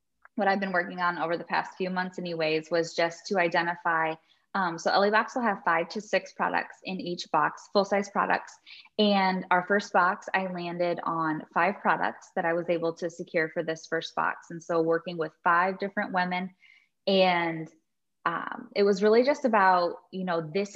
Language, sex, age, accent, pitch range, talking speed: English, female, 10-29, American, 165-195 Hz, 195 wpm